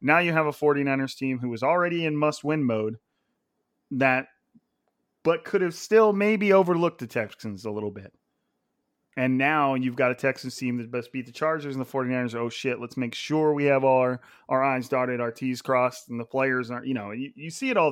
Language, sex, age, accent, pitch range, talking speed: English, male, 30-49, American, 120-150 Hz, 220 wpm